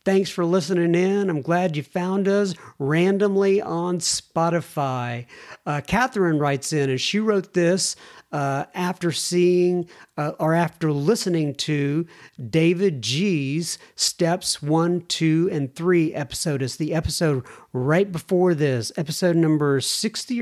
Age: 50-69